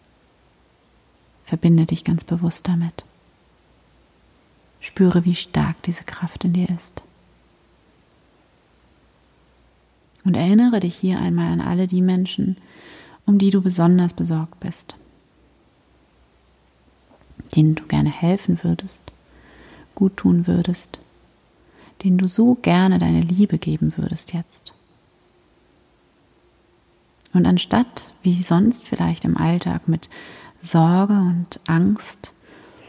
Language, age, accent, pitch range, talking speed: German, 30-49, German, 160-185 Hz, 100 wpm